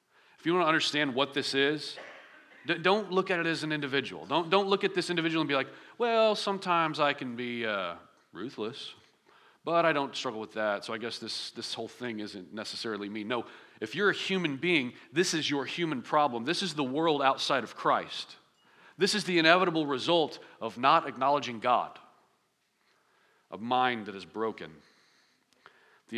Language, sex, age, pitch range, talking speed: English, male, 40-59, 115-160 Hz, 185 wpm